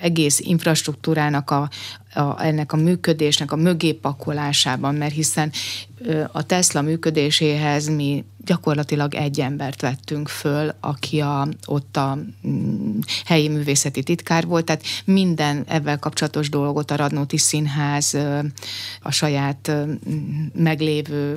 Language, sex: Hungarian, female